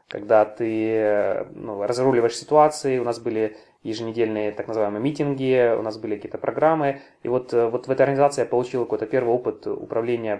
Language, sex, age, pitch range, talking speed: Russian, male, 20-39, 110-135 Hz, 165 wpm